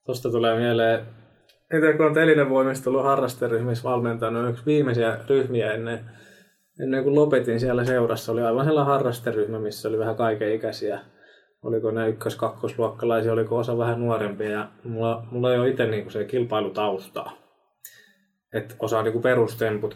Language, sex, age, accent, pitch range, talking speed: Finnish, male, 20-39, native, 115-135 Hz, 150 wpm